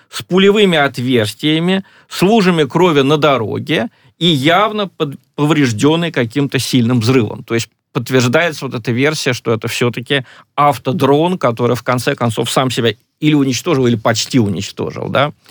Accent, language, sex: native, Russian, male